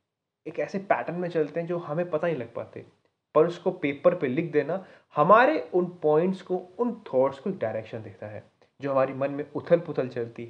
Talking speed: 205 wpm